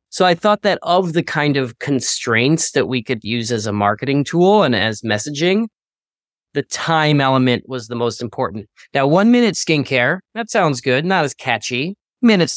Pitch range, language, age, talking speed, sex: 120-160 Hz, English, 20-39, 180 wpm, male